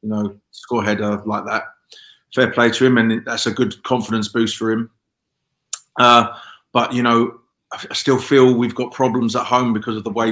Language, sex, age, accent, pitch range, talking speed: English, male, 30-49, British, 105-120 Hz, 210 wpm